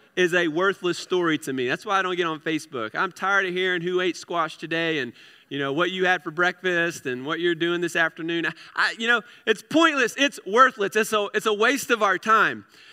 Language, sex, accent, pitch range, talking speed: English, male, American, 160-205 Hz, 230 wpm